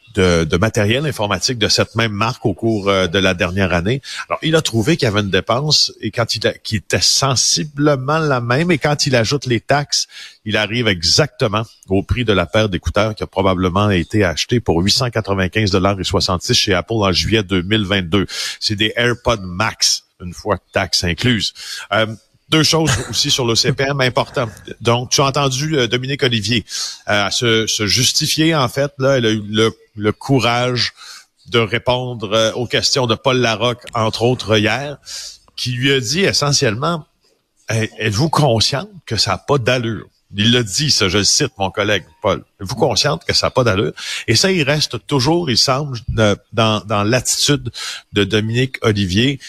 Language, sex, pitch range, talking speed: French, male, 105-130 Hz, 180 wpm